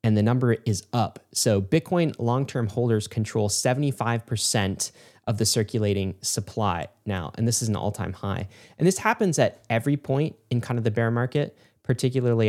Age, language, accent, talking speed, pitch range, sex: 10-29, English, American, 170 wpm, 110-135 Hz, male